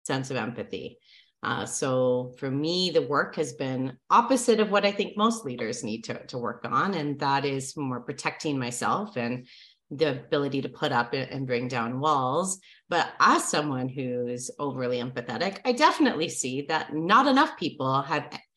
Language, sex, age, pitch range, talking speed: English, female, 30-49, 140-200 Hz, 175 wpm